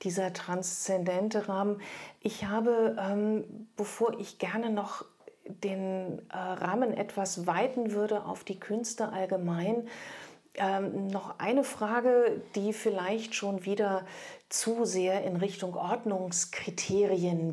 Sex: female